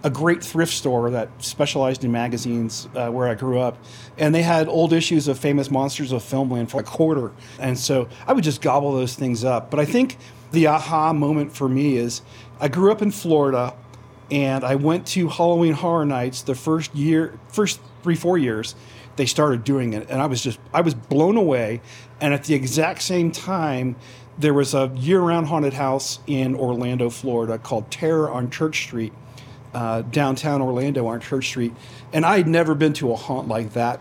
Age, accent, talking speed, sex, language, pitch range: 40-59, American, 195 wpm, male, English, 125-150 Hz